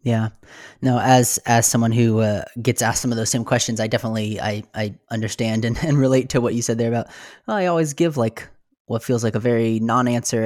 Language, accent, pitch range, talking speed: English, American, 110-130 Hz, 225 wpm